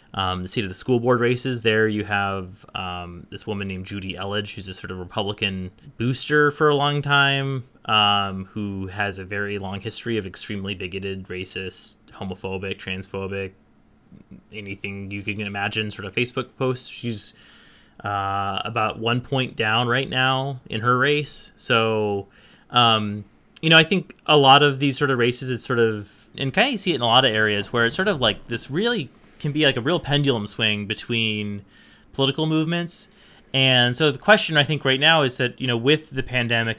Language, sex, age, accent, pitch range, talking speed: English, male, 20-39, American, 100-130 Hz, 190 wpm